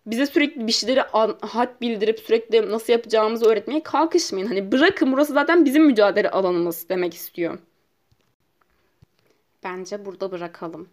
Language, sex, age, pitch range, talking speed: Turkish, female, 20-39, 185-290 Hz, 125 wpm